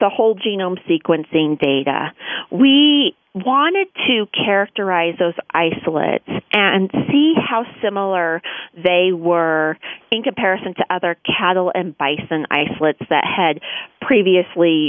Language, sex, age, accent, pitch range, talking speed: English, female, 30-49, American, 170-220 Hz, 115 wpm